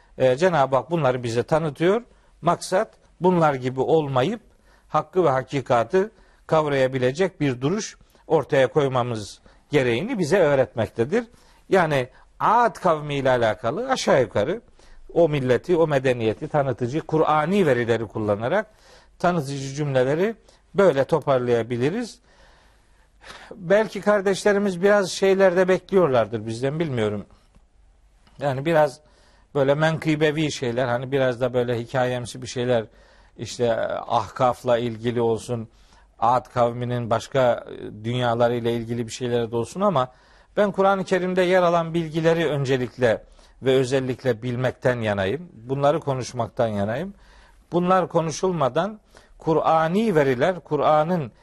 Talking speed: 105 wpm